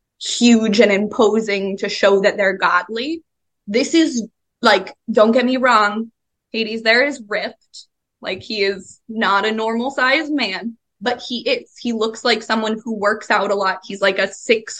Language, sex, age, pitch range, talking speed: English, female, 20-39, 200-235 Hz, 175 wpm